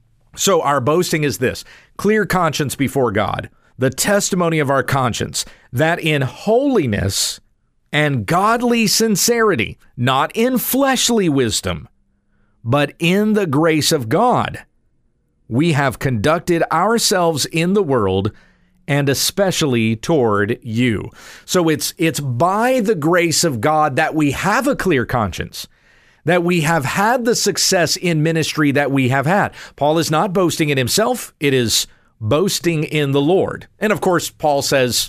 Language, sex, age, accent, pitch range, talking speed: English, male, 50-69, American, 130-175 Hz, 145 wpm